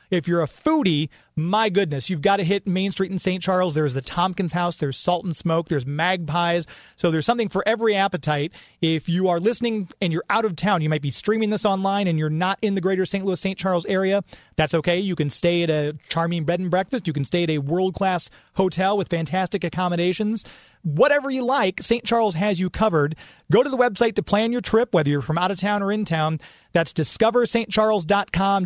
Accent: American